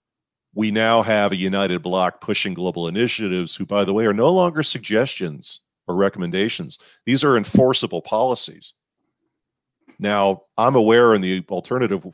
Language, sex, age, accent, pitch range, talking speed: English, male, 40-59, American, 85-105 Hz, 145 wpm